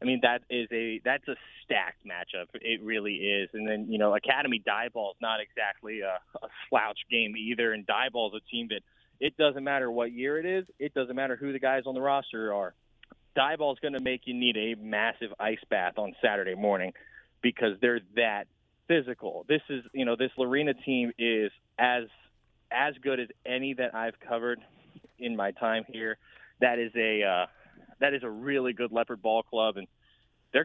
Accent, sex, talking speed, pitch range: American, male, 205 wpm, 115-140 Hz